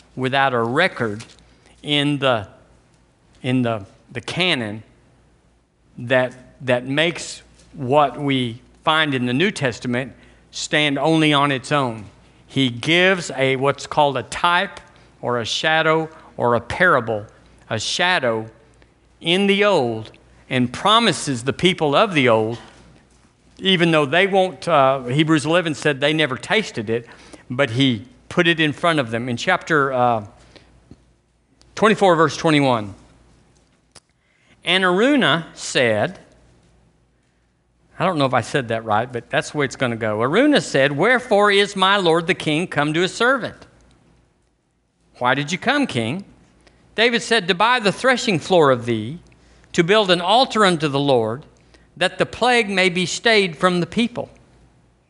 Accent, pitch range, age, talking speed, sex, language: American, 120-180 Hz, 50-69, 150 wpm, male, English